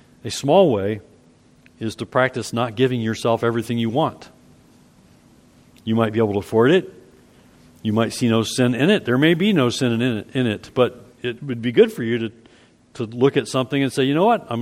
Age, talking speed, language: 50-69, 220 wpm, English